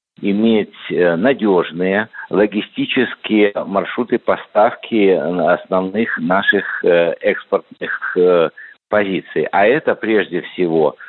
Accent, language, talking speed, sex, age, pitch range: native, Russian, 70 wpm, male, 50-69, 105-140 Hz